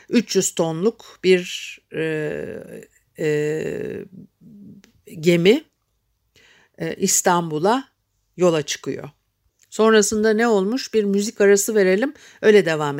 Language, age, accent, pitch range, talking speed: Turkish, 60-79, native, 160-210 Hz, 90 wpm